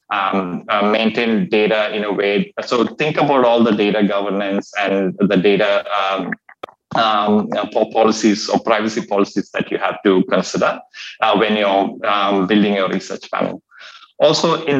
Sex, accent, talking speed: male, Indian, 155 wpm